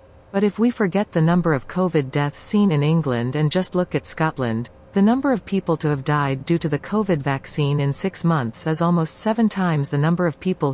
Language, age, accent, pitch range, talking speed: English, 40-59, American, 145-180 Hz, 225 wpm